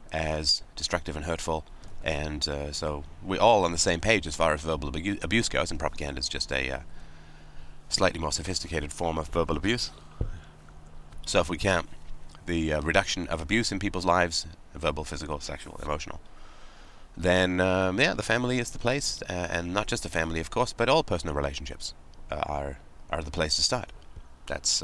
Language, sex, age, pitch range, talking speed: English, male, 30-49, 75-95 Hz, 185 wpm